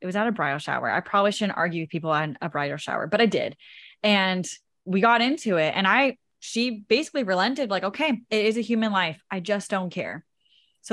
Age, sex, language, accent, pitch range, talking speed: 10-29, female, English, American, 165-210 Hz, 225 wpm